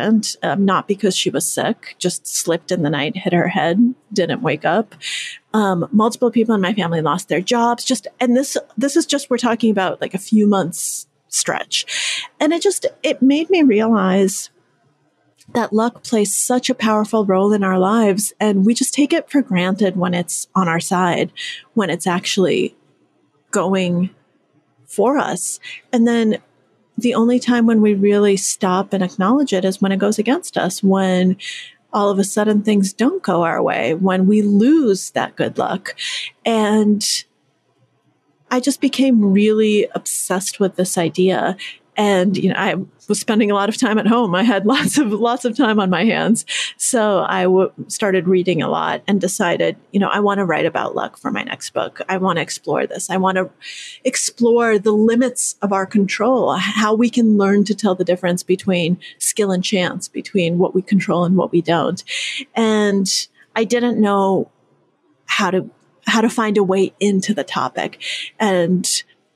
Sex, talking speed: female, 180 wpm